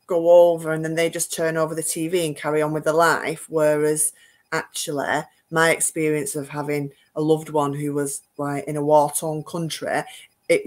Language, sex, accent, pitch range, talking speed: English, female, British, 150-180 Hz, 190 wpm